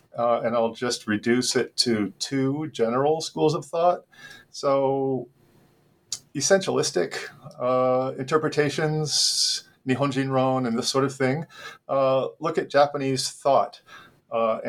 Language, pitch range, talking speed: English, 115-135 Hz, 115 wpm